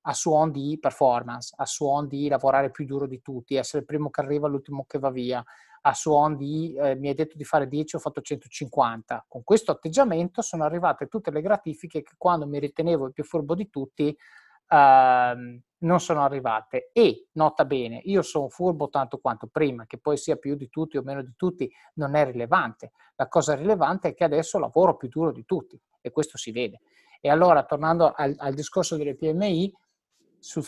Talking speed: 195 wpm